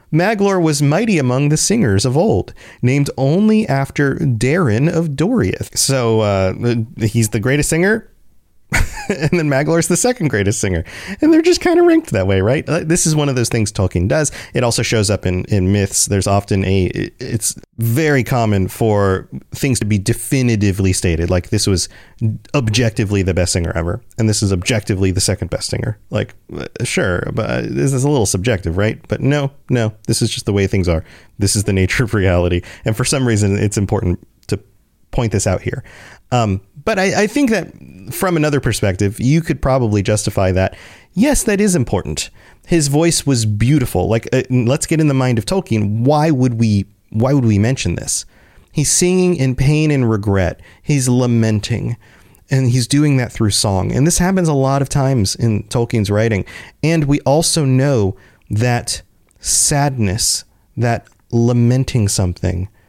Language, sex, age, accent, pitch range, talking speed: English, male, 30-49, American, 100-140 Hz, 180 wpm